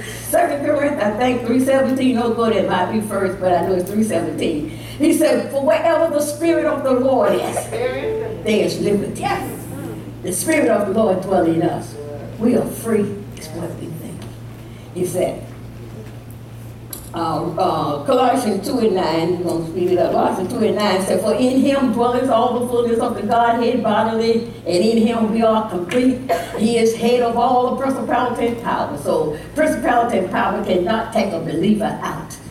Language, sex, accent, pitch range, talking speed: English, female, American, 195-275 Hz, 180 wpm